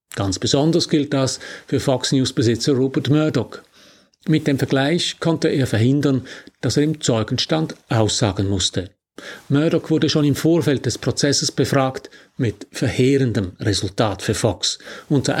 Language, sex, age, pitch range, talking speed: German, male, 50-69, 120-150 Hz, 130 wpm